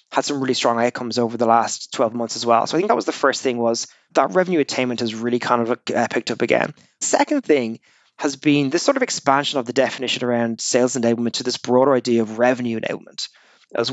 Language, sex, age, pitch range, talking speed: English, male, 20-39, 120-140 Hz, 230 wpm